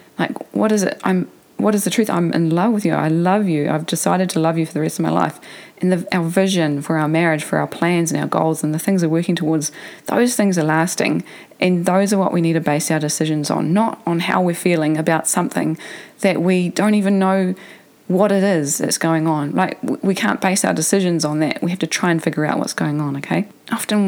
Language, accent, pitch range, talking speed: English, Australian, 160-195 Hz, 250 wpm